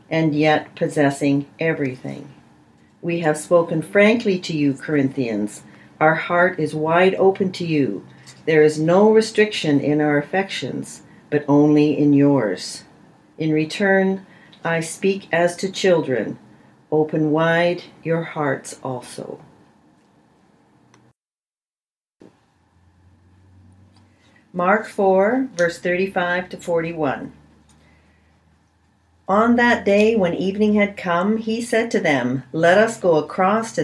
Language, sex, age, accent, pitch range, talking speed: English, female, 50-69, American, 145-195 Hz, 110 wpm